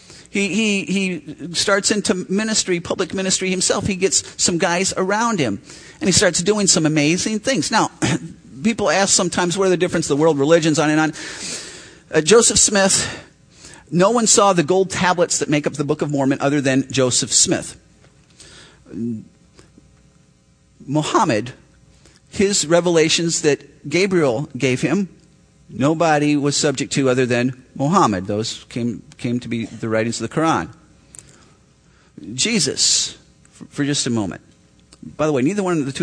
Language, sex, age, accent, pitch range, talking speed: English, male, 40-59, American, 145-195 Hz, 155 wpm